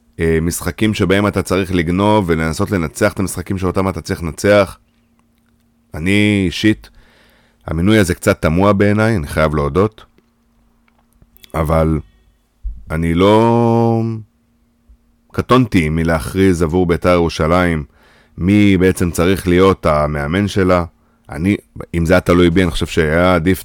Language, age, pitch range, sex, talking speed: Hebrew, 30-49, 80-100 Hz, male, 120 wpm